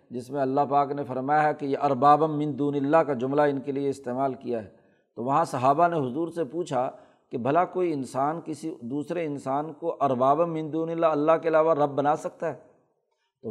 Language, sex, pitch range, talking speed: Urdu, male, 135-165 Hz, 200 wpm